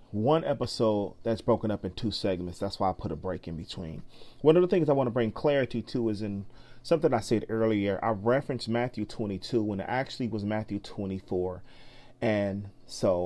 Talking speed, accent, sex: 200 wpm, American, male